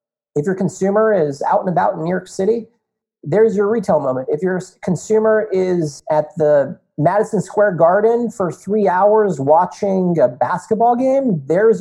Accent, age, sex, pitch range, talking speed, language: American, 40-59, male, 150-205 Hz, 165 wpm, English